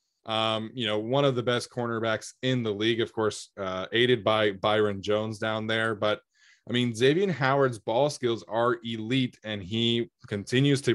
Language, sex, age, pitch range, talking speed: English, male, 20-39, 105-130 Hz, 180 wpm